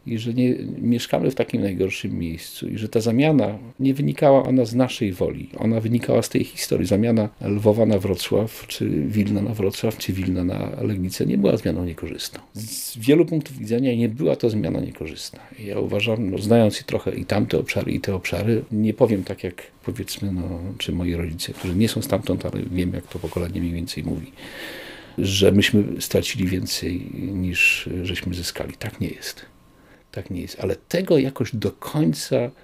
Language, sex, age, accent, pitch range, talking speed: Polish, male, 50-69, native, 95-120 Hz, 175 wpm